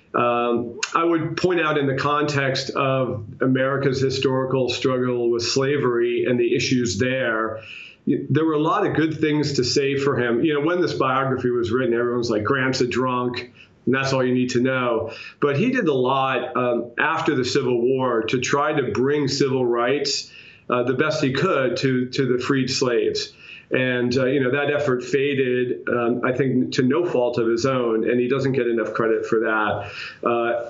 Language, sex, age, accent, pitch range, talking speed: English, male, 40-59, American, 120-140 Hz, 195 wpm